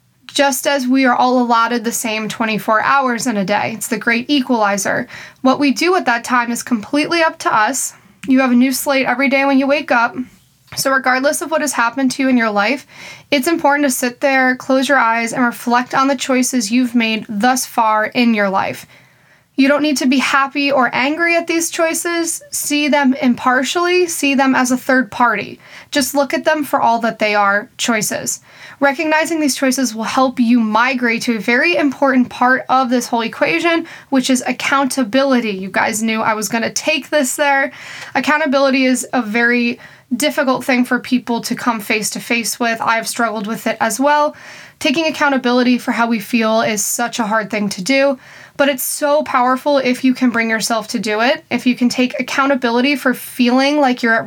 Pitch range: 235-280 Hz